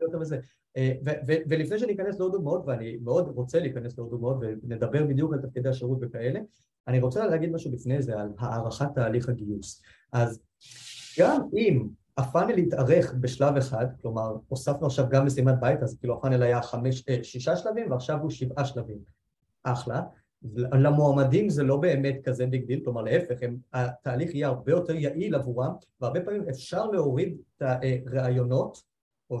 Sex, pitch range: male, 120-150 Hz